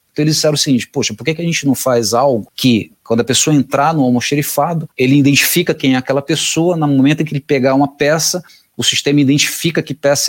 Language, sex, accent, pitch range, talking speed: Portuguese, male, Brazilian, 120-145 Hz, 225 wpm